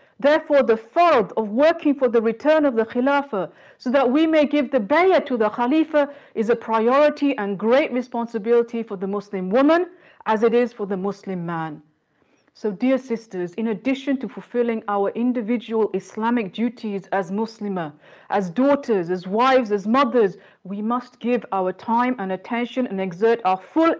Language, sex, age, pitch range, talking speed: English, female, 50-69, 200-265 Hz, 170 wpm